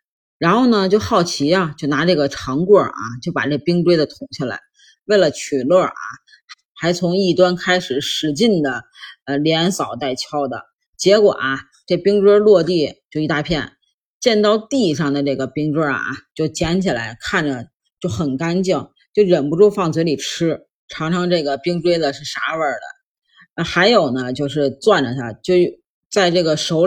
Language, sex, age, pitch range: Chinese, female, 30-49, 140-185 Hz